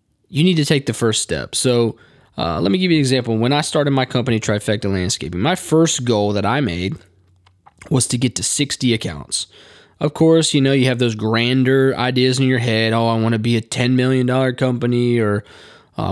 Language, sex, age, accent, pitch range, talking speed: English, male, 20-39, American, 115-145 Hz, 210 wpm